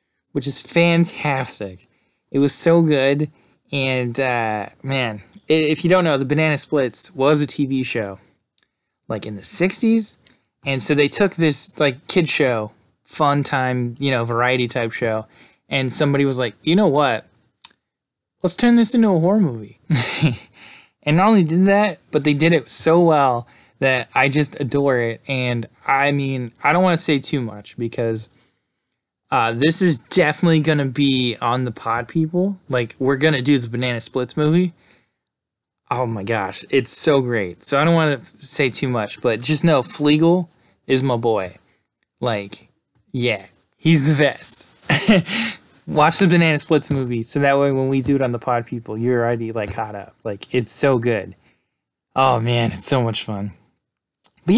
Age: 20-39